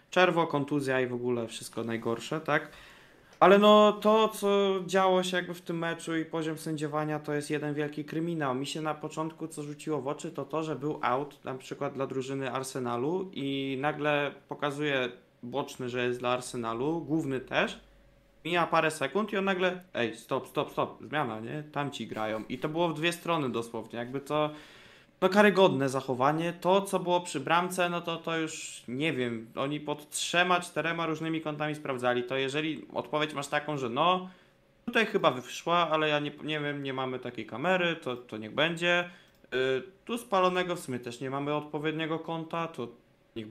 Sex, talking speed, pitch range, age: male, 185 wpm, 135-175 Hz, 20-39